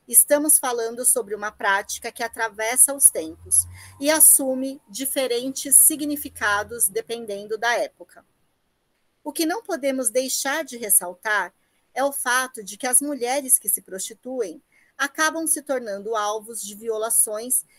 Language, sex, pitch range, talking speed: Portuguese, female, 220-280 Hz, 130 wpm